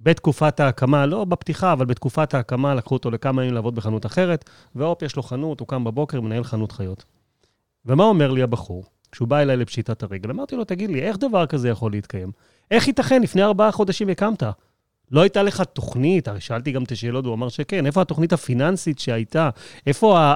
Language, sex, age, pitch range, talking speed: Hebrew, male, 30-49, 115-165 Hz, 195 wpm